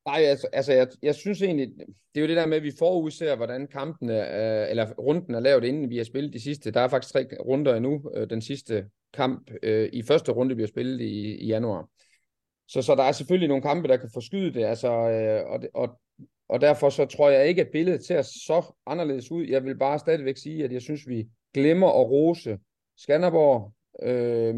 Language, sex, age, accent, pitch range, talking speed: Danish, male, 30-49, native, 115-150 Hz, 215 wpm